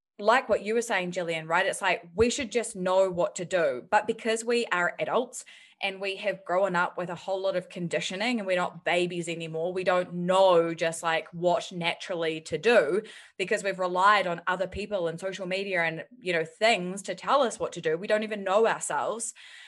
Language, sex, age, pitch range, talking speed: English, female, 20-39, 175-215 Hz, 215 wpm